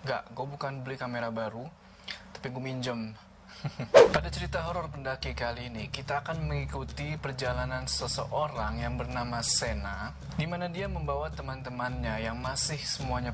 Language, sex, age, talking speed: Indonesian, male, 20-39, 135 wpm